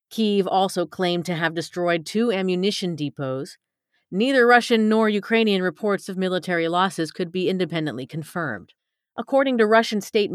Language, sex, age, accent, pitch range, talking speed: English, female, 40-59, American, 170-210 Hz, 145 wpm